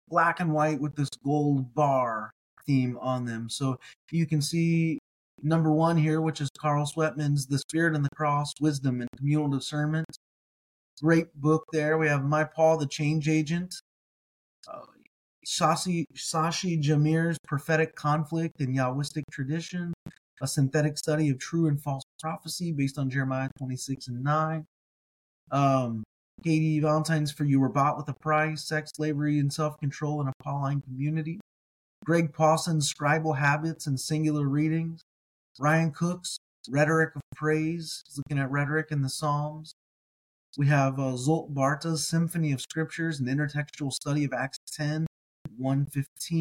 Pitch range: 140-160 Hz